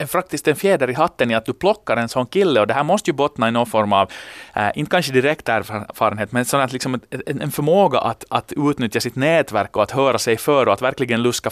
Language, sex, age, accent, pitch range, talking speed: Swedish, male, 30-49, Finnish, 115-155 Hz, 245 wpm